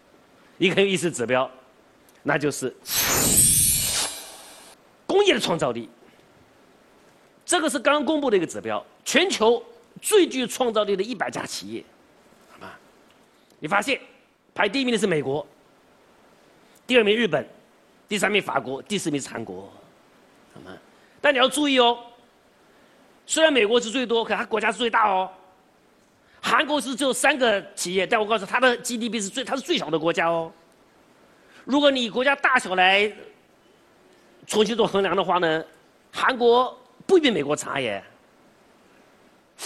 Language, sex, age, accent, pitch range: Chinese, male, 40-59, native, 185-260 Hz